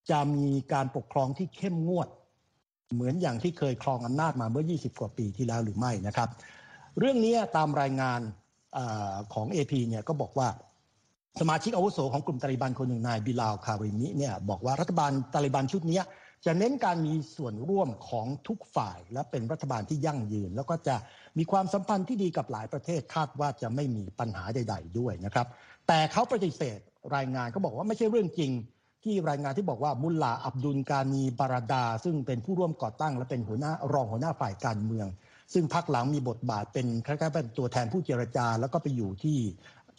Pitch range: 120-160 Hz